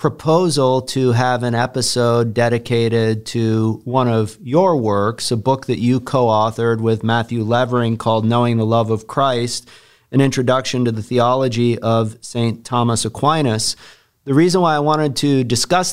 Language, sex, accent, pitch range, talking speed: English, male, American, 120-135 Hz, 160 wpm